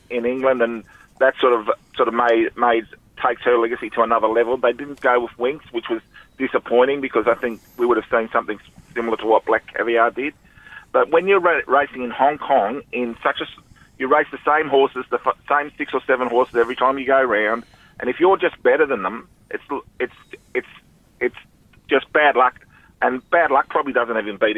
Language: English